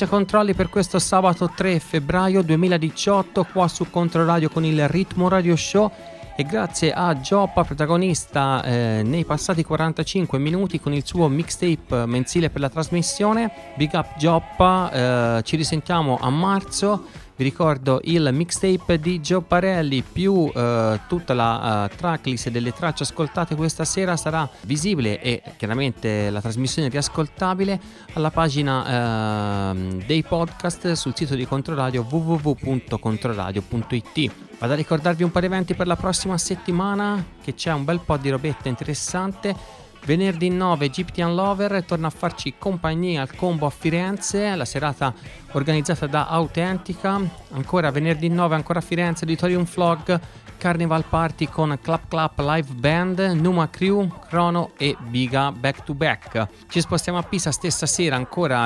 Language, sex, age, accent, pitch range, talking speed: Italian, male, 30-49, native, 135-175 Hz, 145 wpm